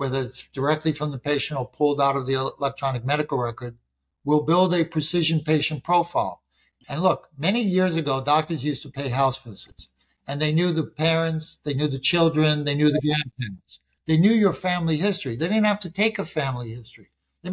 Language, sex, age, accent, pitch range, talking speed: English, male, 60-79, American, 140-175 Hz, 200 wpm